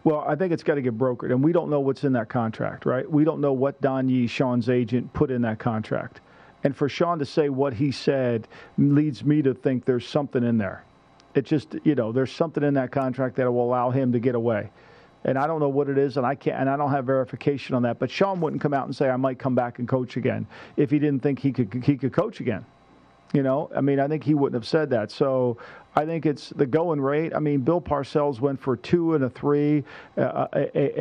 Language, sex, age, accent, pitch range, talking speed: English, male, 50-69, American, 130-155 Hz, 255 wpm